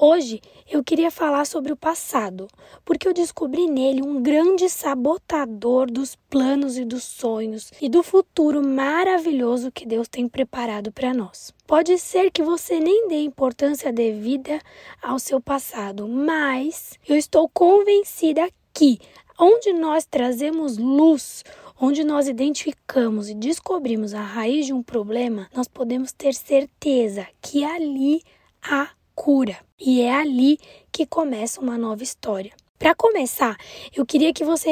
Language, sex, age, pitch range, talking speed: Portuguese, female, 20-39, 250-320 Hz, 140 wpm